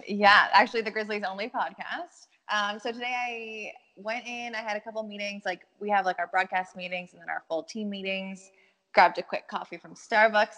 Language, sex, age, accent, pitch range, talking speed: English, female, 20-39, American, 180-220 Hz, 205 wpm